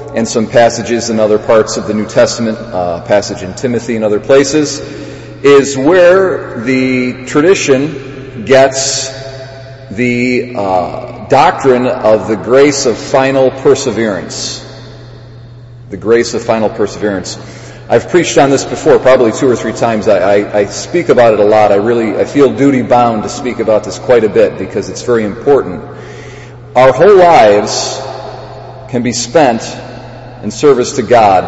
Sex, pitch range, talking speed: male, 115-135 Hz, 155 wpm